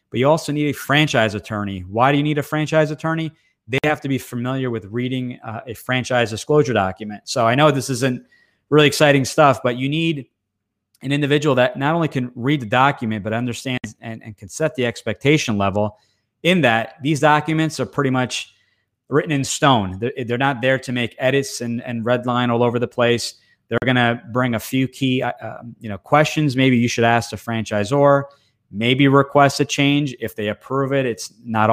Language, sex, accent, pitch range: English, male, American, 110-135 Hz